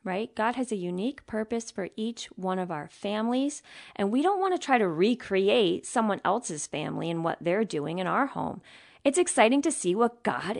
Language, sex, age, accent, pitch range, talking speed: English, female, 40-59, American, 215-345 Hz, 205 wpm